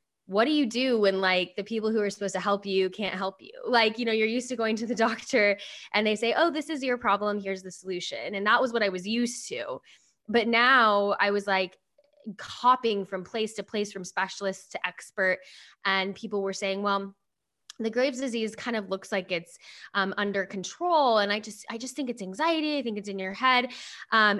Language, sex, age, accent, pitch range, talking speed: English, female, 10-29, American, 180-220 Hz, 225 wpm